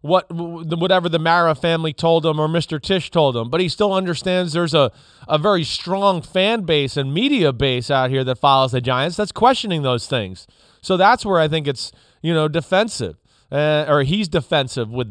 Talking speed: 200 wpm